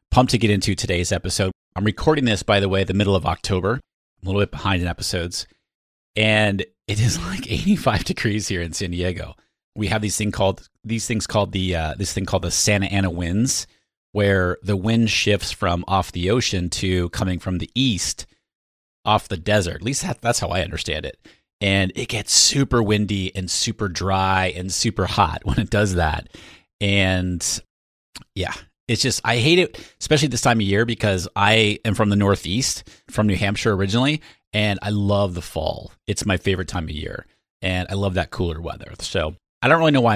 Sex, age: male, 30-49